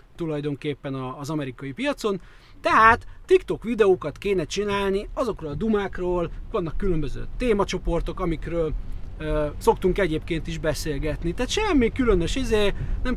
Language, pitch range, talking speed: Hungarian, 155-210 Hz, 120 wpm